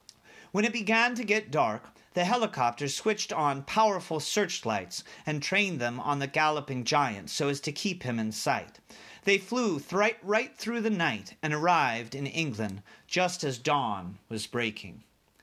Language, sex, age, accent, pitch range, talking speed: English, male, 40-59, American, 120-180 Hz, 160 wpm